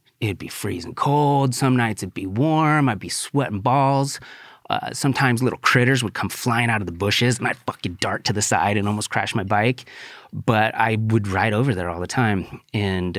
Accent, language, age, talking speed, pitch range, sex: American, English, 30-49, 210 wpm, 95-125 Hz, male